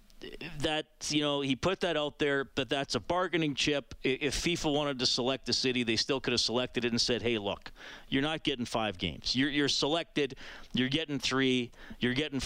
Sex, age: male, 40-59